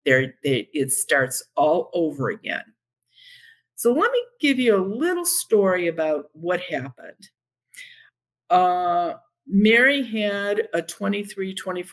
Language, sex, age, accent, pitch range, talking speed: English, female, 50-69, American, 155-235 Hz, 110 wpm